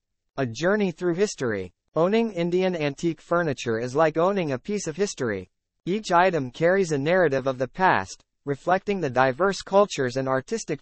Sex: male